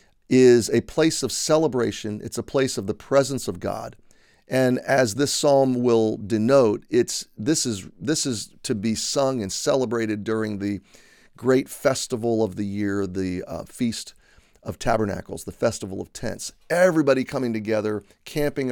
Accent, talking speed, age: American, 155 wpm, 40-59